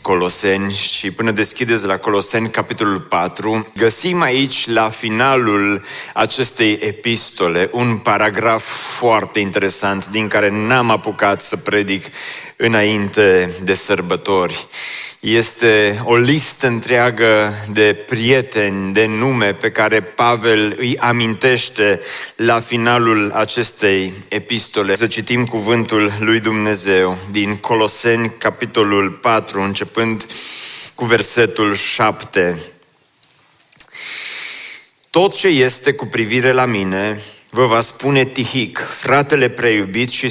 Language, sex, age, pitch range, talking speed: Romanian, male, 30-49, 105-120 Hz, 105 wpm